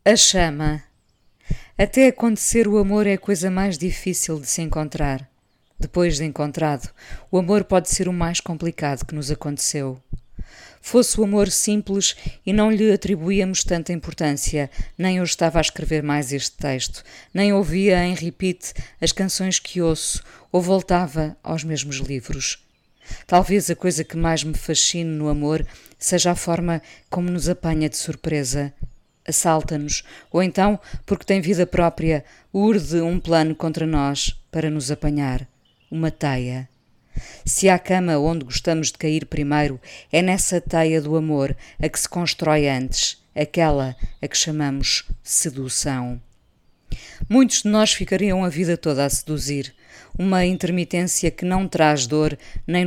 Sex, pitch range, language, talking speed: female, 145-180 Hz, Portuguese, 150 wpm